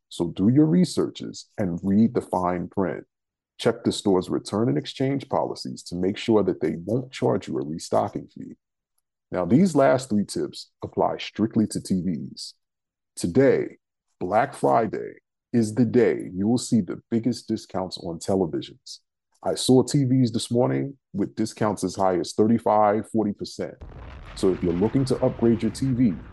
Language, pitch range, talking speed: English, 100-130 Hz, 160 wpm